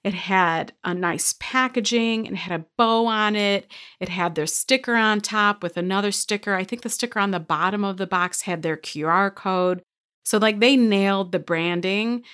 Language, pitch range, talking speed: English, 175-225 Hz, 195 wpm